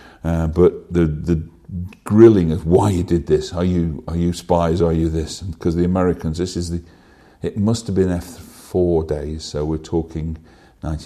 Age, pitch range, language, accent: 50-69, 80-105 Hz, English, British